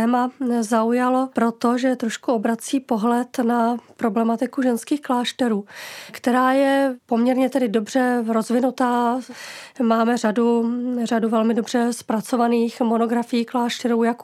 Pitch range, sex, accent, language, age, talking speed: 230-260 Hz, female, native, Czech, 20-39, 105 wpm